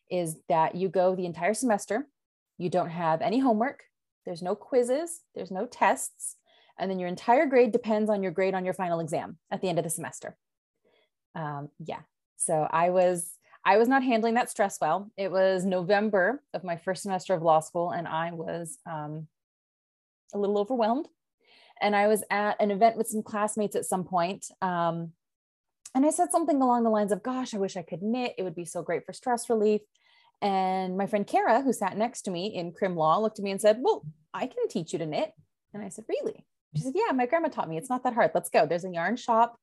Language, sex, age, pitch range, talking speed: English, female, 30-49, 175-230 Hz, 220 wpm